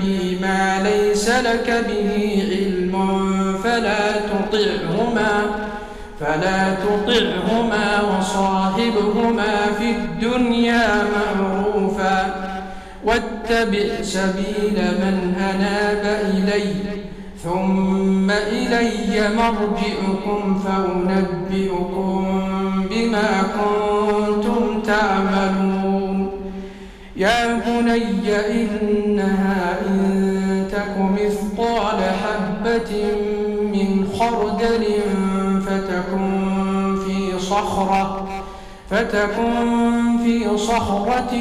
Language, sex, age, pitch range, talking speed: Arabic, male, 50-69, 195-215 Hz, 50 wpm